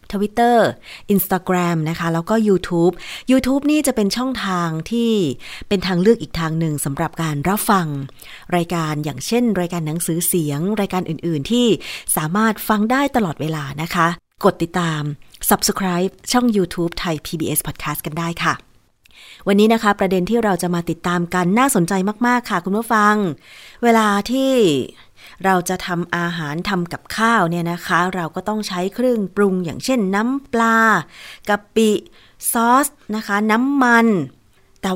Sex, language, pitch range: female, Thai, 165-215 Hz